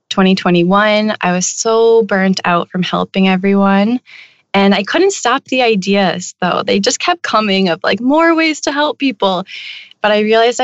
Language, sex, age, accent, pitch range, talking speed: English, female, 20-39, American, 180-230 Hz, 170 wpm